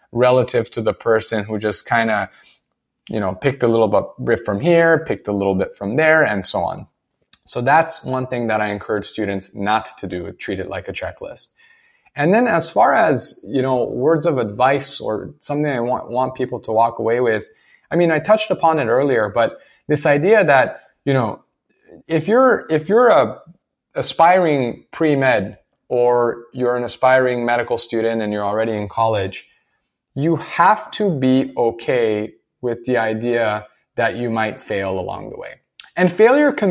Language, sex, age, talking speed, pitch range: English, male, 20-39, 180 wpm, 115-155 Hz